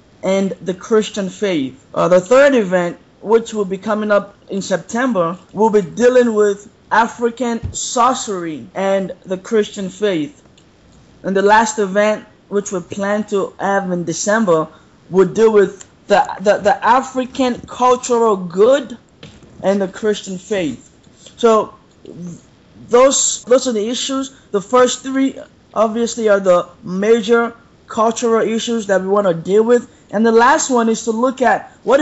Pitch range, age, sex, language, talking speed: 195-235 Hz, 20-39, male, English, 150 wpm